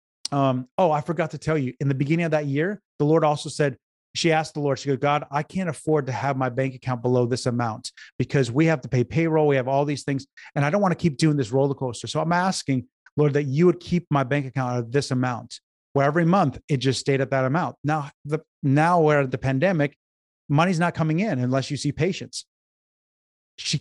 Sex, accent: male, American